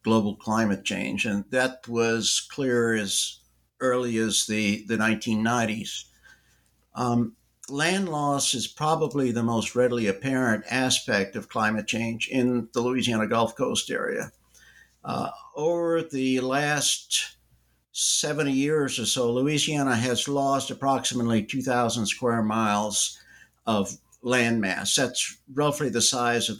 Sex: male